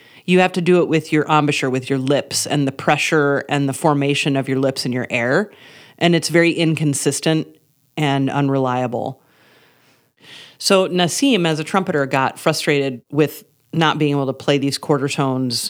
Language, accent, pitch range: English, American, 140-170 Hz